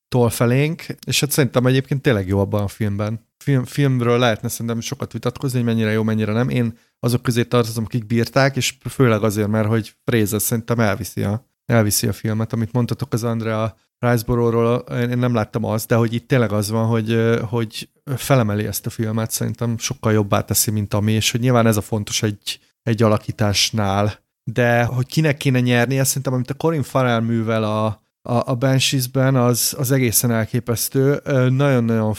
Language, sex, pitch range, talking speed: Hungarian, male, 110-130 Hz, 180 wpm